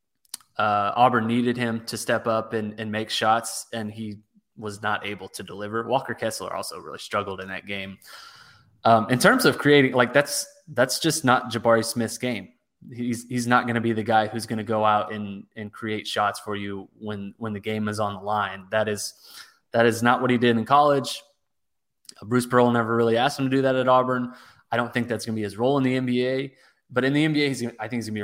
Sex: male